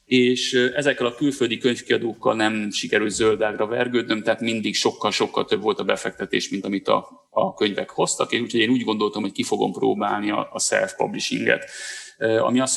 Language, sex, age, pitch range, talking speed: Hungarian, male, 30-49, 110-130 Hz, 160 wpm